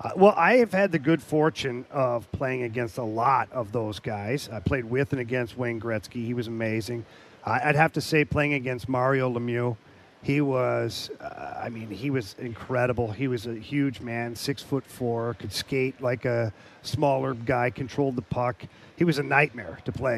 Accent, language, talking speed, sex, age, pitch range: American, English, 195 wpm, male, 40-59, 120-145 Hz